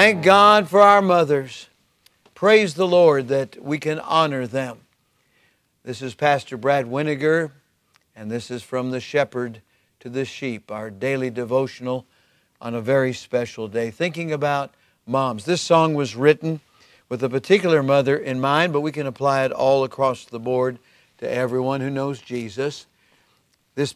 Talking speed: 160 wpm